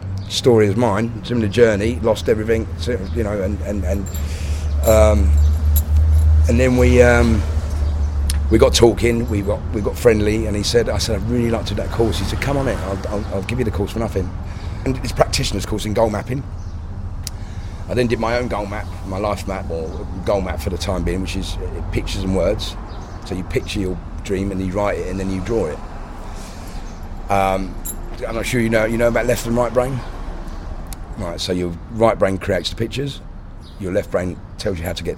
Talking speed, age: 210 wpm, 30-49